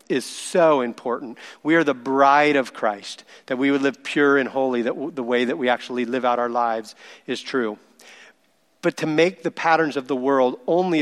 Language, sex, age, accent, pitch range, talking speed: English, male, 40-59, American, 135-165 Hz, 200 wpm